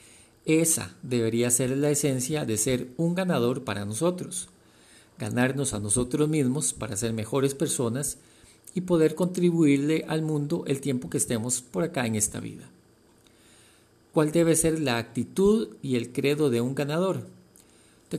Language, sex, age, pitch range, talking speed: Spanish, male, 50-69, 115-160 Hz, 150 wpm